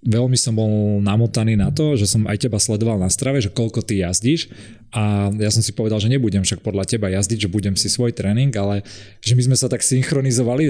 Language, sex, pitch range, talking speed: Slovak, male, 105-125 Hz, 225 wpm